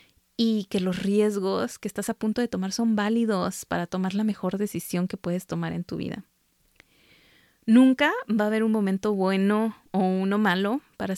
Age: 20-39